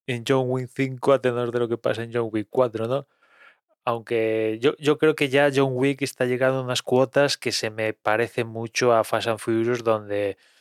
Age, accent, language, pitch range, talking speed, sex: 20-39, Spanish, Spanish, 110-130 Hz, 215 wpm, male